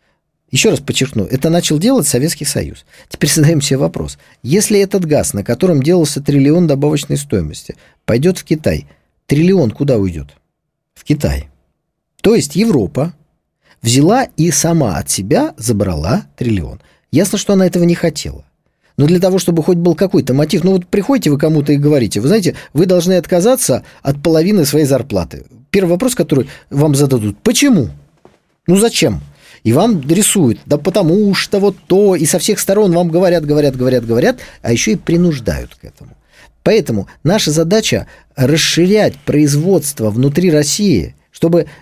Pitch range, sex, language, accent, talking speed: 130-180 Hz, male, Russian, native, 155 wpm